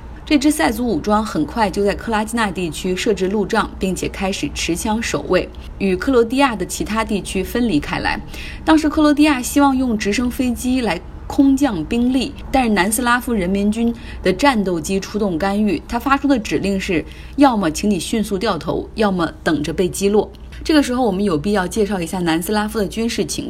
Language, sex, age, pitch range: Chinese, female, 20-39, 180-245 Hz